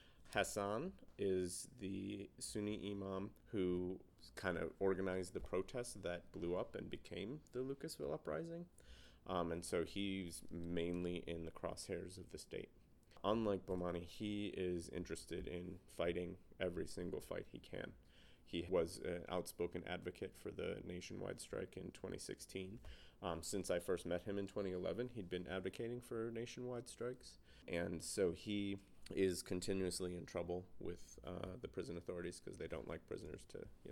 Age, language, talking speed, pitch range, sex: 30-49, English, 150 wpm, 85-100 Hz, male